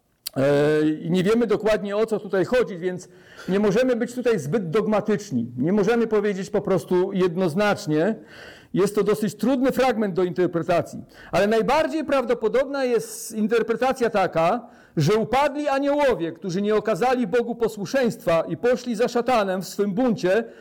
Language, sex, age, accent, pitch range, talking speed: Polish, male, 50-69, native, 200-250 Hz, 145 wpm